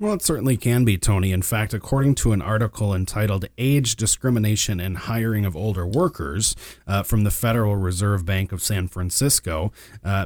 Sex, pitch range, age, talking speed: male, 90-115 Hz, 30-49, 175 wpm